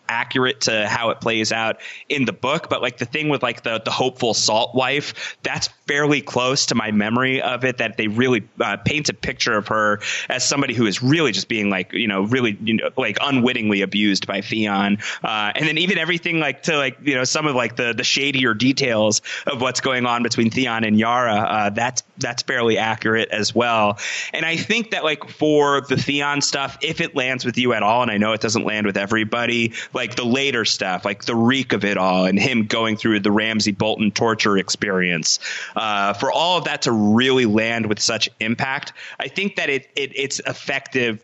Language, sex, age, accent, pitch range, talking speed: English, male, 30-49, American, 105-130 Hz, 215 wpm